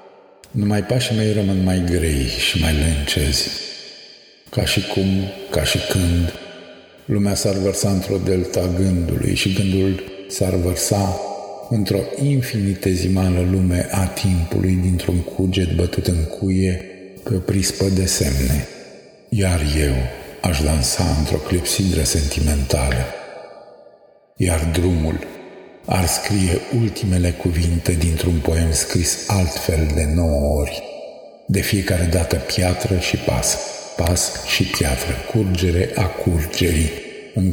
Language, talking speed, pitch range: Romanian, 115 wpm, 80-95 Hz